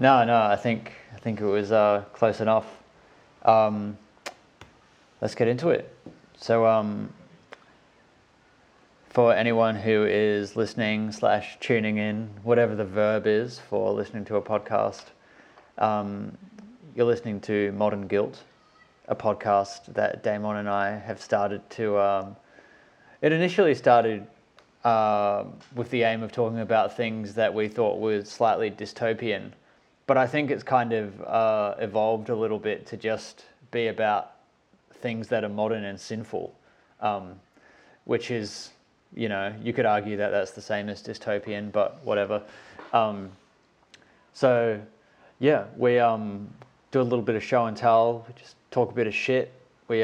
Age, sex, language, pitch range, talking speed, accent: 20-39, male, English, 105-120 Hz, 150 wpm, Australian